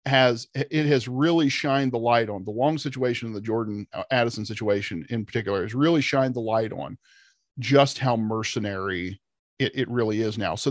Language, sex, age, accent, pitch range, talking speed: English, male, 40-59, American, 105-140 Hz, 190 wpm